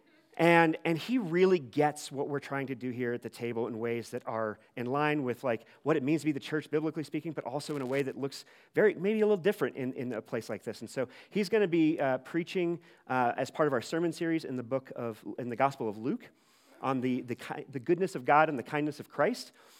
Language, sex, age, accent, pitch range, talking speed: English, male, 40-59, American, 130-170 Hz, 260 wpm